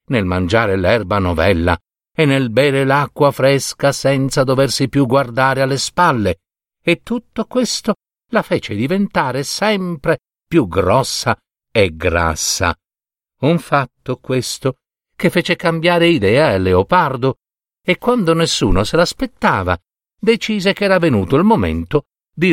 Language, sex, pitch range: Italian, male, 115-175 Hz